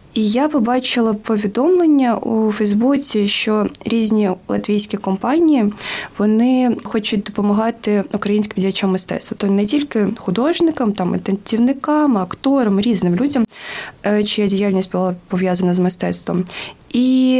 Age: 20-39